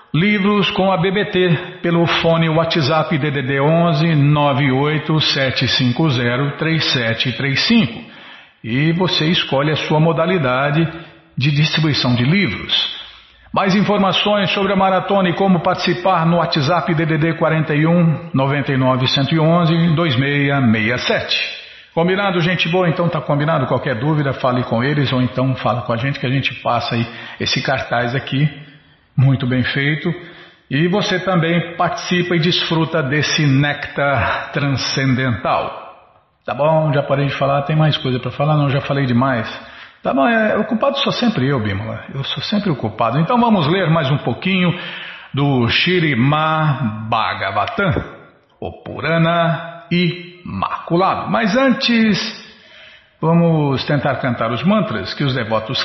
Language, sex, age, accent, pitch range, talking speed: Portuguese, male, 50-69, Brazilian, 135-175 Hz, 130 wpm